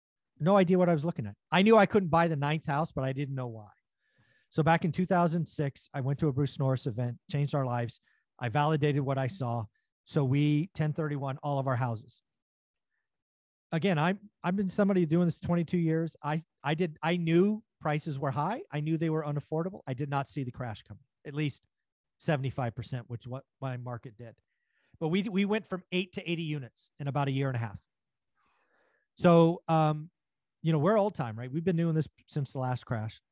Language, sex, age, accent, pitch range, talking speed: English, male, 40-59, American, 130-170 Hz, 210 wpm